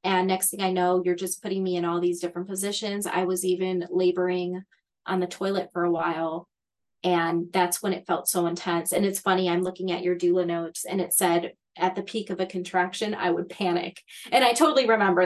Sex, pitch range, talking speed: female, 180-215 Hz, 220 wpm